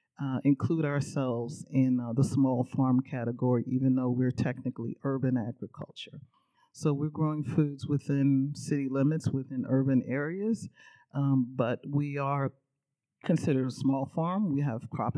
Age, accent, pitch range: 40-59, American, 130-155 Hz